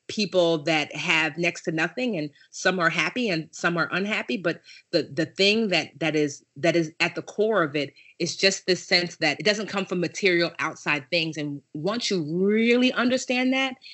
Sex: female